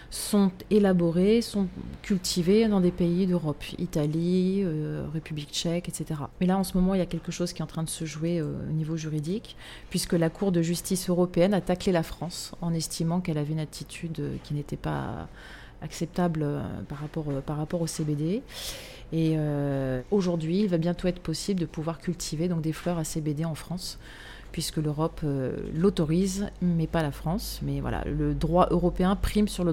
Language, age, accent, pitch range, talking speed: French, 30-49, French, 160-190 Hz, 185 wpm